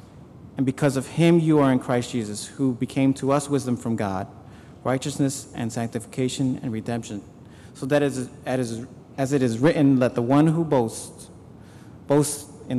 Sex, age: male, 40-59